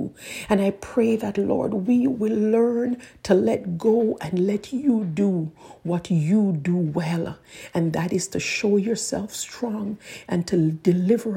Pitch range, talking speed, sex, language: 175-215 Hz, 155 wpm, female, English